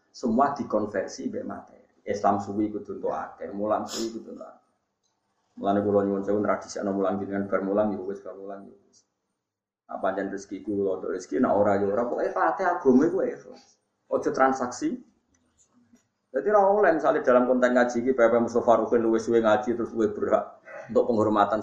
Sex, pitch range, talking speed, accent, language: male, 105-170 Hz, 60 wpm, native, Indonesian